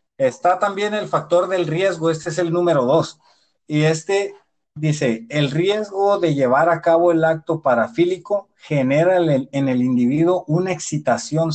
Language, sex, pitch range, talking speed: Spanish, male, 130-165 Hz, 155 wpm